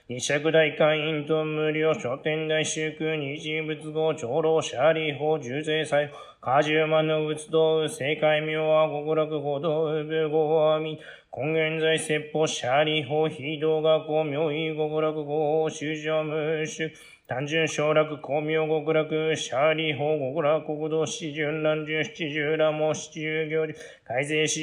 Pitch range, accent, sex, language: 150-155 Hz, native, male, Japanese